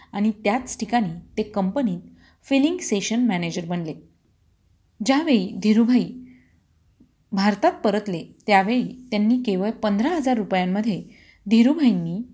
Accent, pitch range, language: native, 190-245 Hz, Marathi